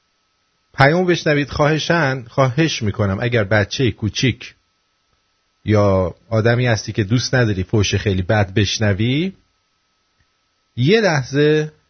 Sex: male